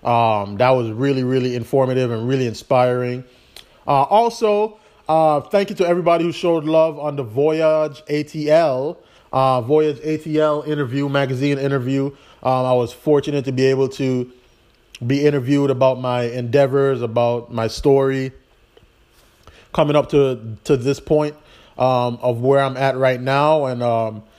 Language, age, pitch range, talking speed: English, 20-39, 130-155 Hz, 150 wpm